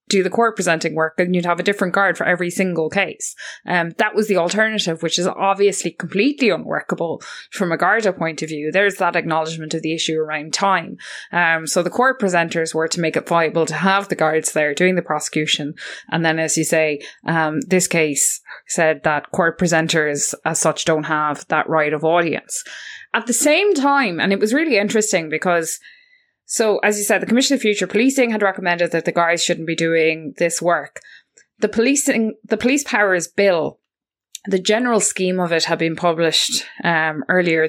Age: 20-39